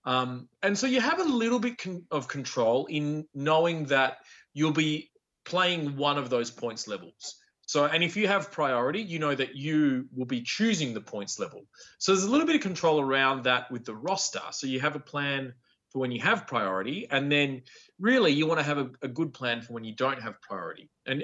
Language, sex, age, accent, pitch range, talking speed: English, male, 30-49, Australian, 130-170 Hz, 220 wpm